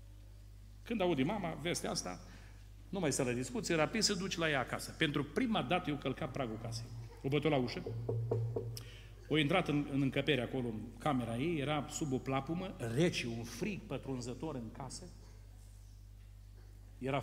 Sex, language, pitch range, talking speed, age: male, Romanian, 115-155 Hz, 165 wpm, 40-59